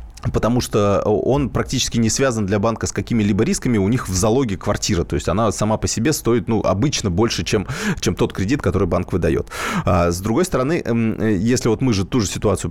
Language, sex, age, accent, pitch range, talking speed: Russian, male, 20-39, native, 100-130 Hz, 210 wpm